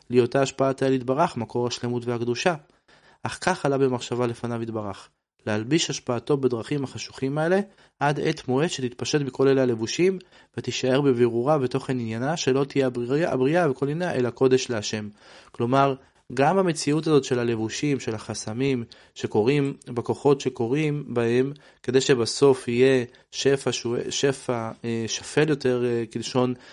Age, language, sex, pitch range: 20-39, Hebrew, male, 115-140 Hz